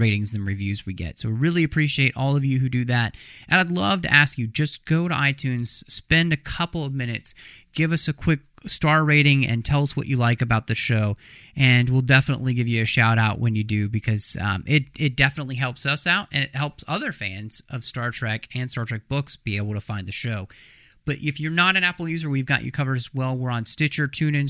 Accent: American